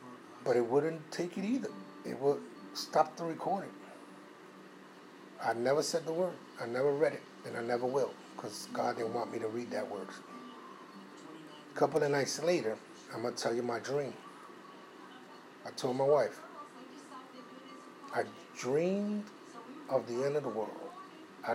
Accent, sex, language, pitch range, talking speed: American, male, English, 120-160 Hz, 160 wpm